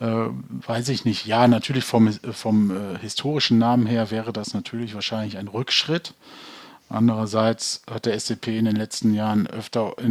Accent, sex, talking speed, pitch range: German, male, 160 wpm, 110-125 Hz